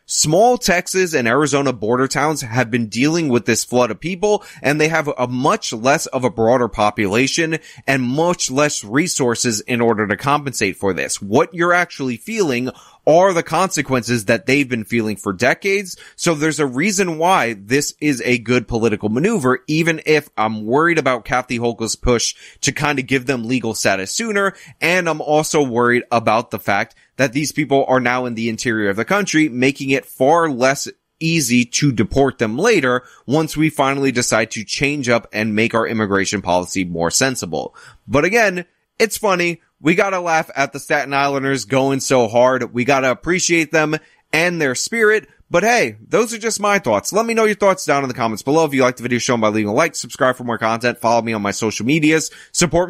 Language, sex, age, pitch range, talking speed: English, male, 20-39, 120-165 Hz, 200 wpm